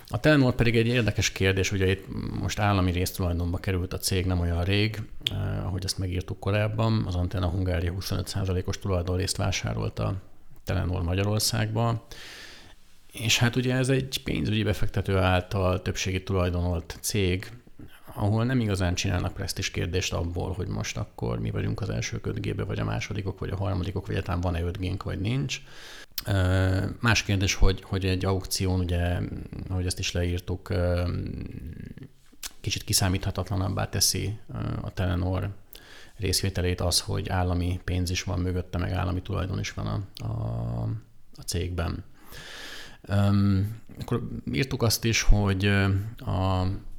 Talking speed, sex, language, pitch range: 140 wpm, male, Hungarian, 90-105 Hz